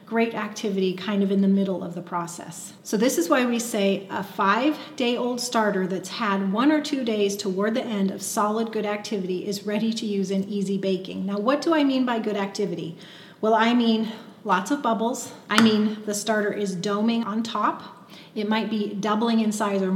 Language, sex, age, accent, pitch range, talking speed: English, female, 30-49, American, 195-225 Hz, 210 wpm